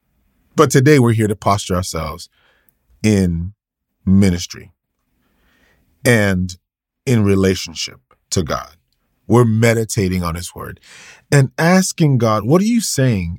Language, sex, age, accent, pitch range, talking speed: English, male, 30-49, American, 95-135 Hz, 115 wpm